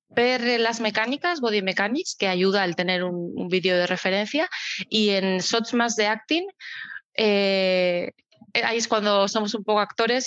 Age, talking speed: 20-39, 165 wpm